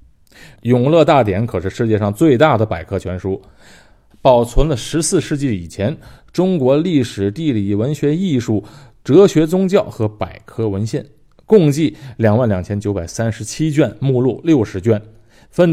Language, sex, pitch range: Chinese, male, 100-140 Hz